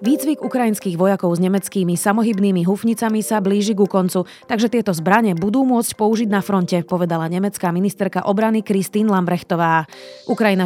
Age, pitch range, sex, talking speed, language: 30-49, 185-225 Hz, female, 145 wpm, Slovak